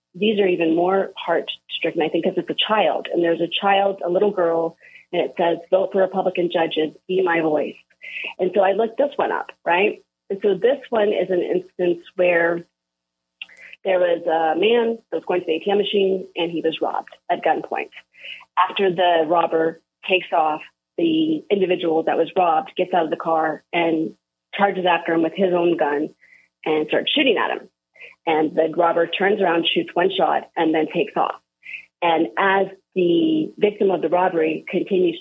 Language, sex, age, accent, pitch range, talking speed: English, female, 30-49, American, 160-190 Hz, 185 wpm